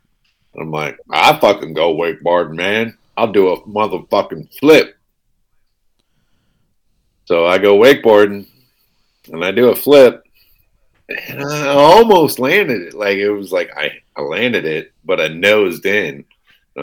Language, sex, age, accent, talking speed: English, male, 50-69, American, 135 wpm